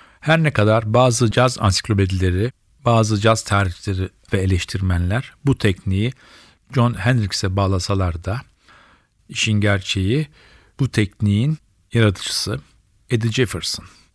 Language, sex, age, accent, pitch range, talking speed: Turkish, male, 40-59, native, 100-120 Hz, 100 wpm